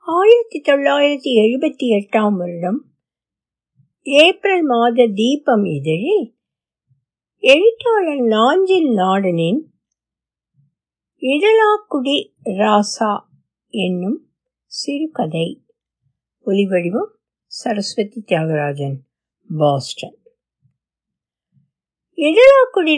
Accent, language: native, Tamil